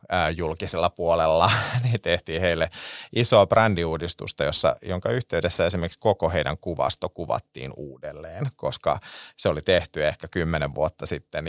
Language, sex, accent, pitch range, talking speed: Finnish, male, native, 80-95 Hz, 120 wpm